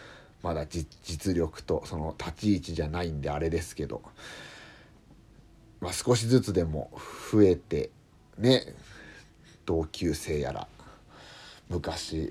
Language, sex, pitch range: Japanese, male, 80-115 Hz